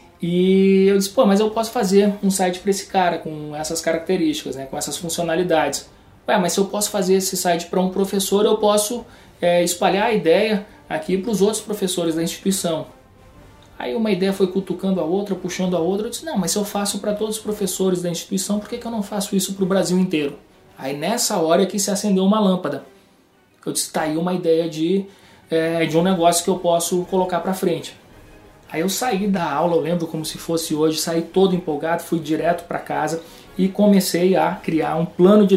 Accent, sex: Brazilian, male